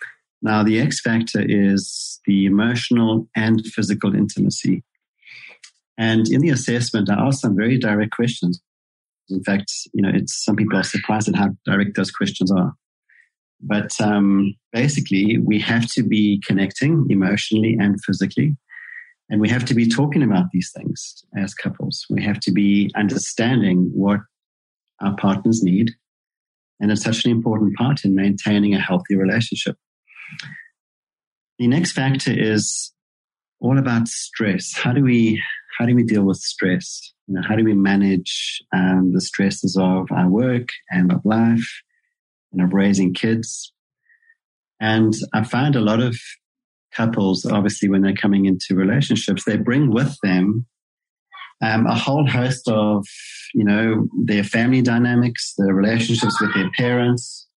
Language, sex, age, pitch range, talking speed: English, male, 40-59, 100-120 Hz, 150 wpm